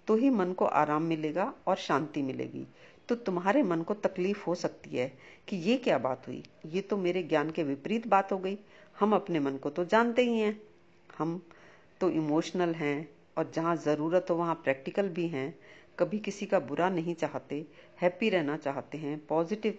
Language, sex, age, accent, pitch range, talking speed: Hindi, female, 50-69, native, 155-195 Hz, 190 wpm